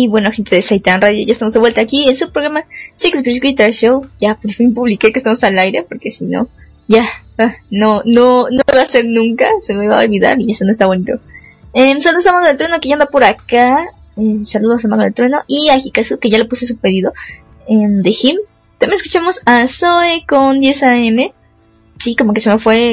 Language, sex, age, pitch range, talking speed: Spanish, female, 10-29, 215-265 Hz, 230 wpm